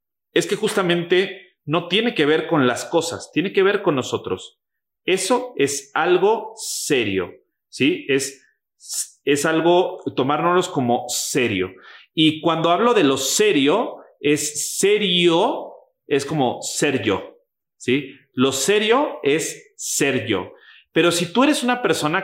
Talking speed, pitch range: 135 wpm, 130-195 Hz